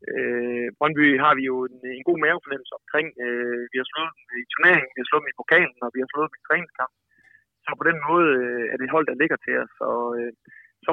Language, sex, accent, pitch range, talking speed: Danish, male, native, 125-155 Hz, 245 wpm